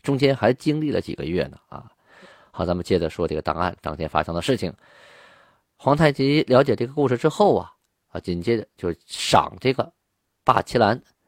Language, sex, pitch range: Chinese, male, 95-130 Hz